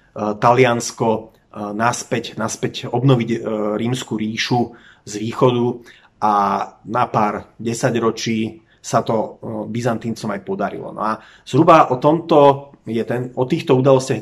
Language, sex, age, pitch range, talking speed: Slovak, male, 30-49, 110-130 Hz, 115 wpm